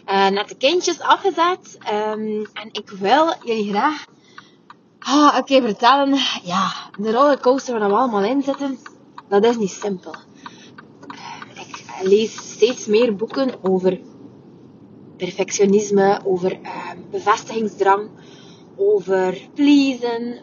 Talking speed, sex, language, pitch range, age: 120 wpm, female, Dutch, 205-275 Hz, 20-39